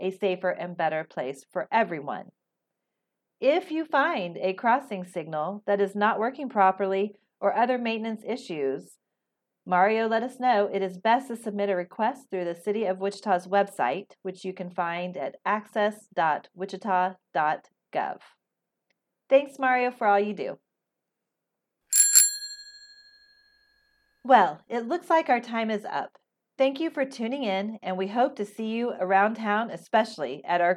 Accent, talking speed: American, 145 wpm